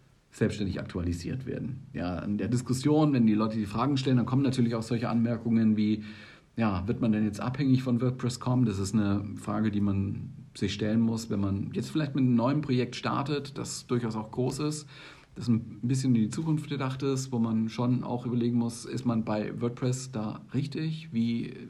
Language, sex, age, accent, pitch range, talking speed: German, male, 50-69, German, 110-140 Hz, 195 wpm